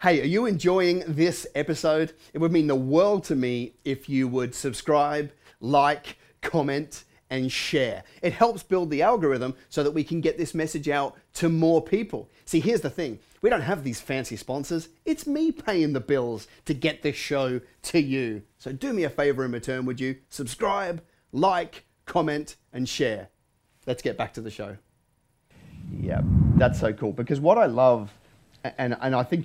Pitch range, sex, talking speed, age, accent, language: 115-150 Hz, male, 185 wpm, 30-49, Australian, English